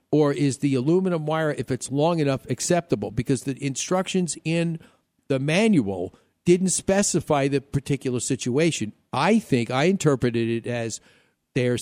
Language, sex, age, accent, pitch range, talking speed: English, male, 50-69, American, 120-165 Hz, 140 wpm